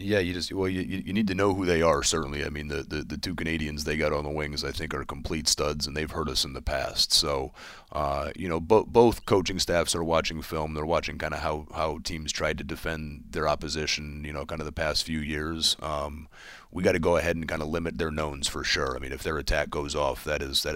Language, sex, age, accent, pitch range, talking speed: English, male, 30-49, American, 75-80 Hz, 255 wpm